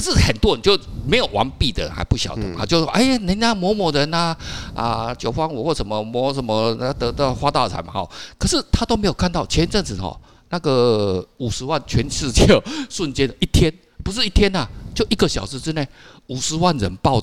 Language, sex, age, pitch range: Chinese, male, 50-69, 115-180 Hz